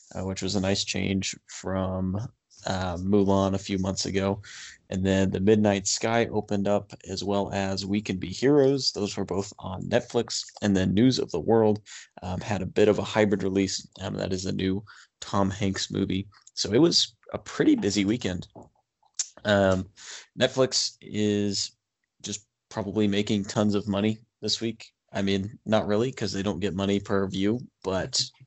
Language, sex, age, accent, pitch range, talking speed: English, male, 20-39, American, 100-110 Hz, 175 wpm